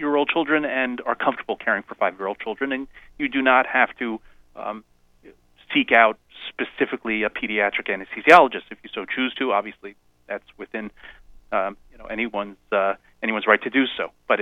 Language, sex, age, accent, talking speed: English, male, 40-59, American, 175 wpm